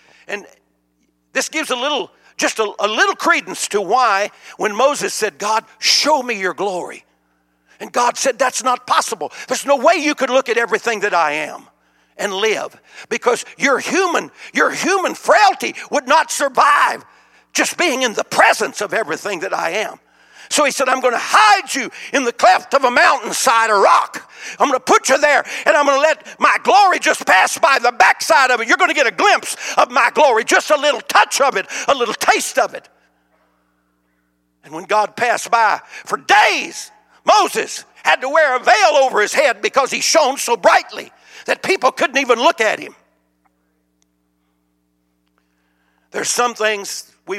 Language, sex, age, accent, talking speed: English, male, 60-79, American, 185 wpm